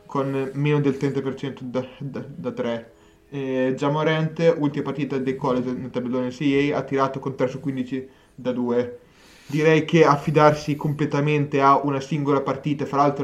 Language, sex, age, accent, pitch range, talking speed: Italian, male, 20-39, native, 130-145 Hz, 165 wpm